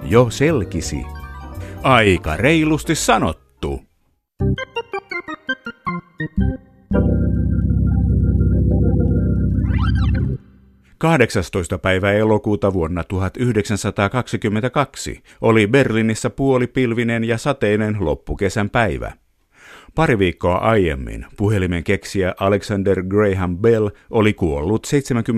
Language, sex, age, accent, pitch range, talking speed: Finnish, male, 50-69, native, 90-120 Hz, 65 wpm